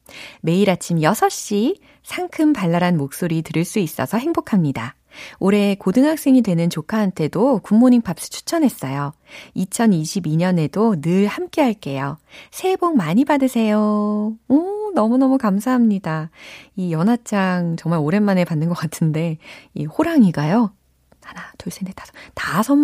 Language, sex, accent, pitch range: Korean, female, native, 155-225 Hz